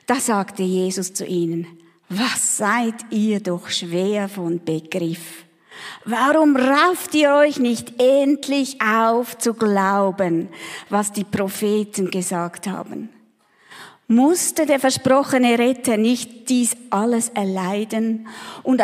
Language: German